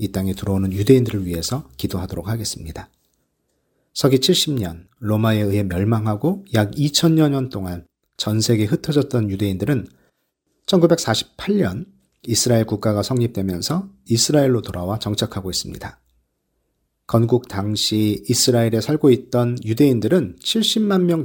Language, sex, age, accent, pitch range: Korean, male, 40-59, native, 100-145 Hz